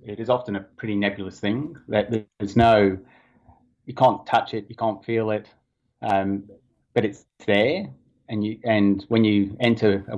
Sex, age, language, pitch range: male, 30-49, English, 100-110 Hz